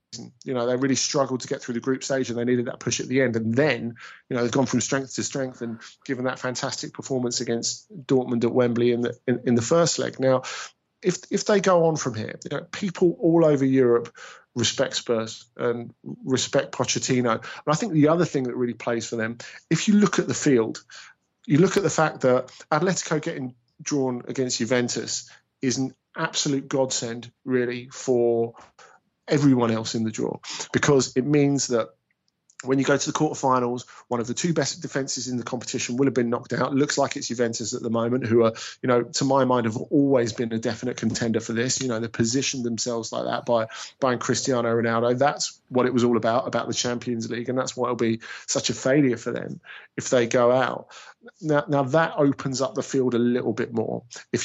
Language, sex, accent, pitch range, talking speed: English, male, British, 120-140 Hz, 210 wpm